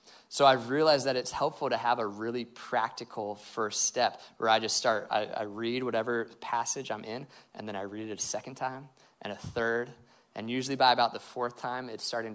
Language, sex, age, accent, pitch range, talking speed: English, male, 20-39, American, 110-130 Hz, 215 wpm